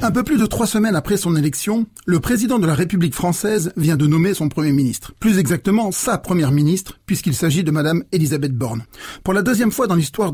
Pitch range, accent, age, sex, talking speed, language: 145-200 Hz, French, 40-59, male, 220 wpm, French